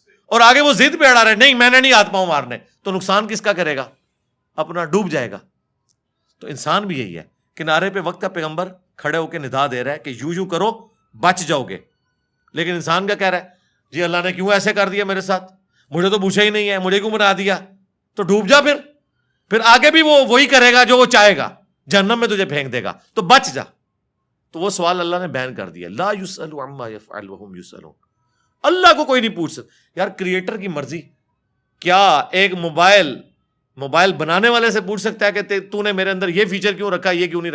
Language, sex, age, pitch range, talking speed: Urdu, male, 50-69, 155-205 Hz, 215 wpm